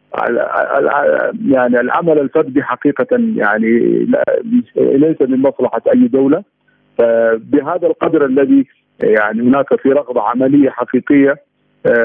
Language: Arabic